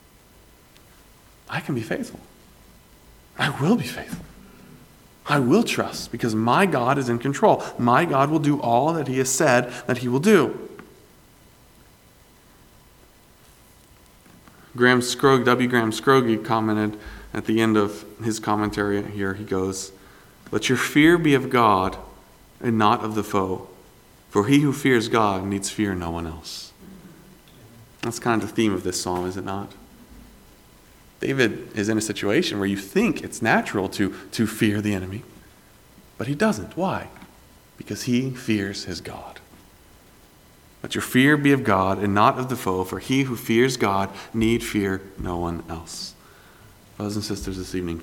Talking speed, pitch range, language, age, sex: 160 wpm, 95-125 Hz, English, 40-59, male